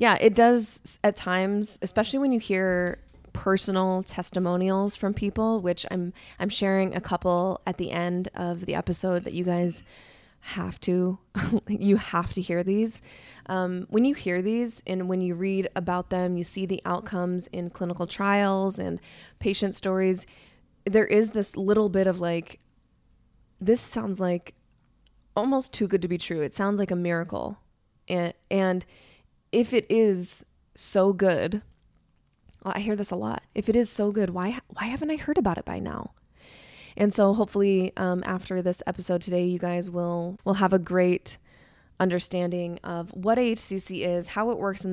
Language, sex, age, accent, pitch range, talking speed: English, female, 20-39, American, 180-205 Hz, 170 wpm